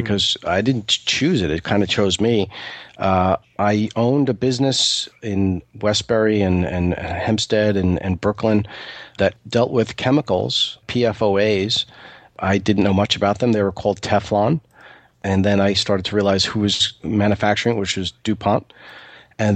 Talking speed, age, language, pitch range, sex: 160 wpm, 40-59, English, 100-115 Hz, male